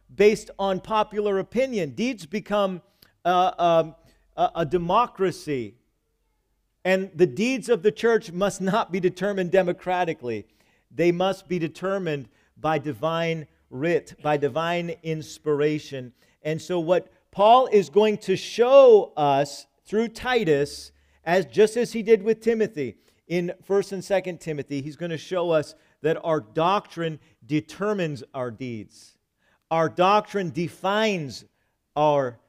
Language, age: English, 50-69